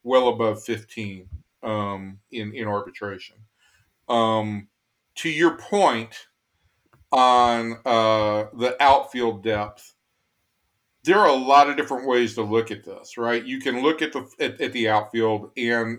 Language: English